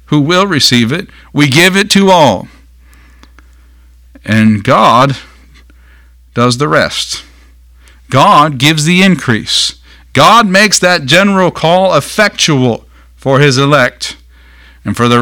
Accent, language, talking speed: American, English, 120 wpm